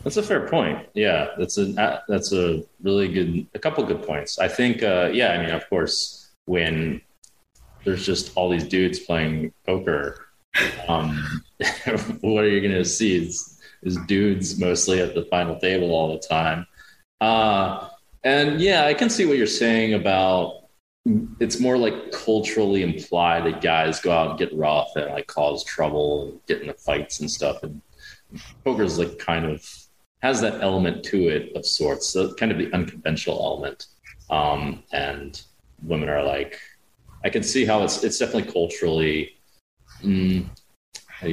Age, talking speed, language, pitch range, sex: 20-39, 165 wpm, English, 80-105 Hz, male